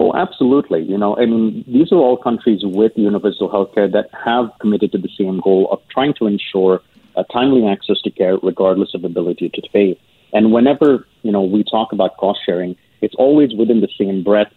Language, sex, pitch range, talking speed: English, male, 95-120 Hz, 205 wpm